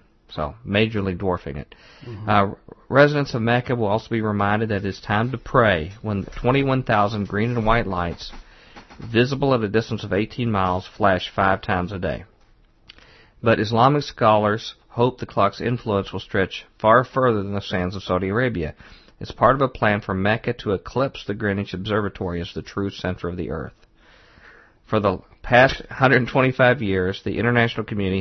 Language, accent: English, American